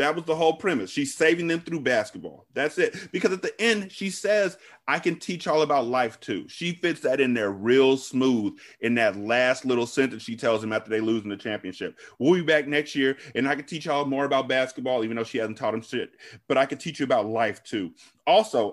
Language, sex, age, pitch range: English, male, 30-49, 120-155 Hz